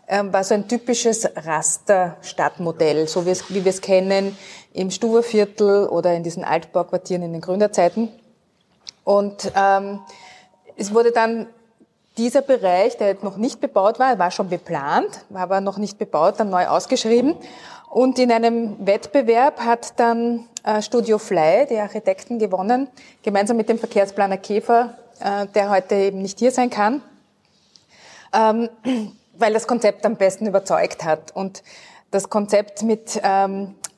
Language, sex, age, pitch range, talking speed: German, female, 20-39, 195-235 Hz, 145 wpm